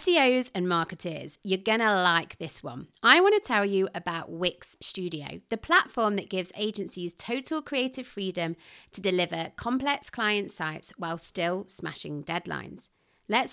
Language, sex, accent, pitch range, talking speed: English, female, British, 170-245 Hz, 155 wpm